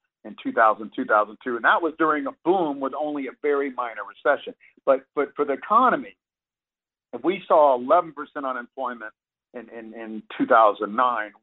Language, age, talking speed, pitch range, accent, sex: English, 50-69, 160 wpm, 105-160 Hz, American, male